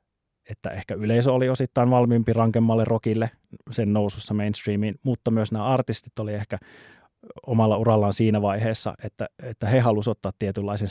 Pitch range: 100-115 Hz